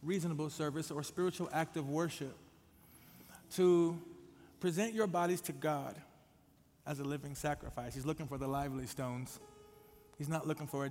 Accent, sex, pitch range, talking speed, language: American, male, 145-190 Hz, 155 wpm, English